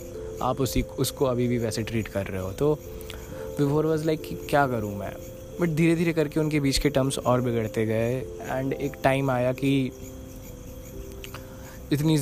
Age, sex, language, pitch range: 20-39, male, Hindi, 110-135 Hz